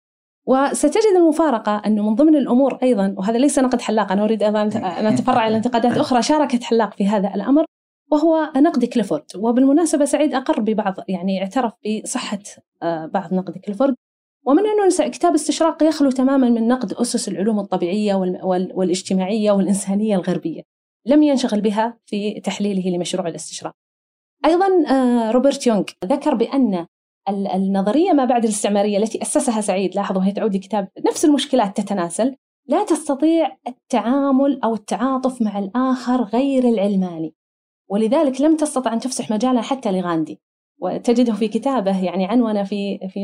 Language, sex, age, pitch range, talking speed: Arabic, female, 30-49, 200-275 Hz, 145 wpm